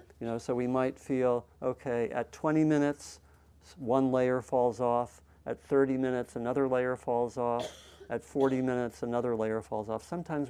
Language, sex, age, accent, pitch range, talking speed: English, male, 50-69, American, 110-130 Hz, 165 wpm